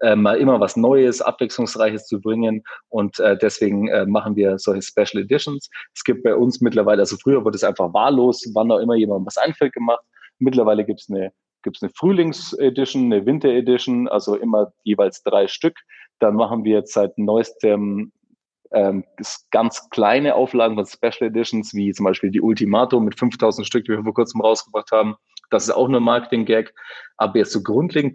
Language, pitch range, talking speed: German, 105-125 Hz, 190 wpm